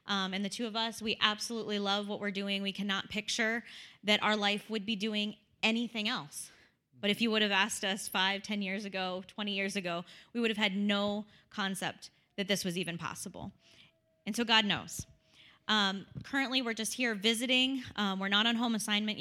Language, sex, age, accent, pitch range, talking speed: English, female, 10-29, American, 190-230 Hz, 200 wpm